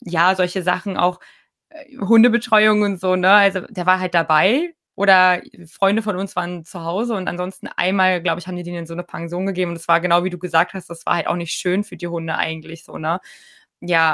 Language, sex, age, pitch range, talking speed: German, female, 20-39, 175-205 Hz, 225 wpm